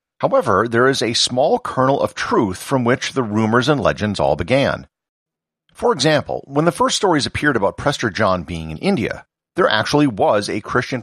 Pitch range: 95-125 Hz